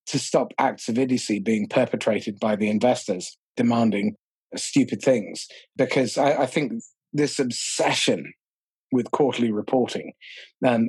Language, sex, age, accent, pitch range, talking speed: English, male, 30-49, British, 110-145 Hz, 125 wpm